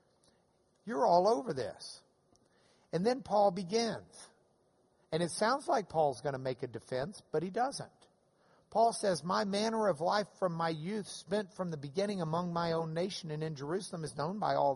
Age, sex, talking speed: 50-69, male, 185 wpm